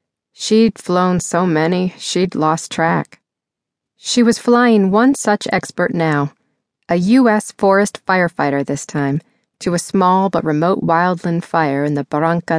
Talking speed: 145 wpm